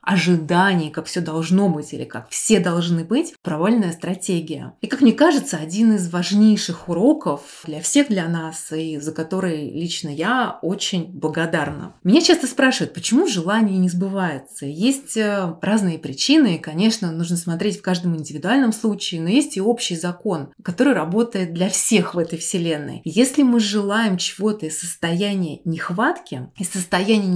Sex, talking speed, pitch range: female, 150 wpm, 170-215 Hz